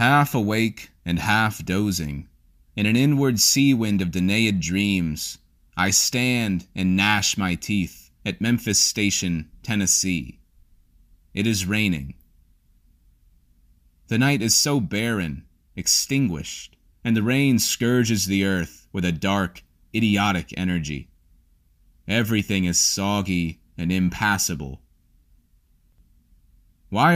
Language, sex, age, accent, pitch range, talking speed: English, male, 30-49, American, 80-110 Hz, 110 wpm